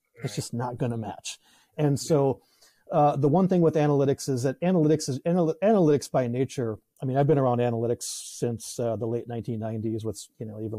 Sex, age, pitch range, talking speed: male, 30-49, 120-150 Hz, 205 wpm